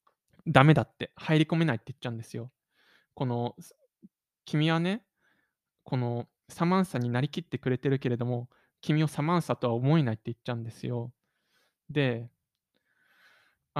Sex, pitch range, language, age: male, 125-170 Hz, Japanese, 20-39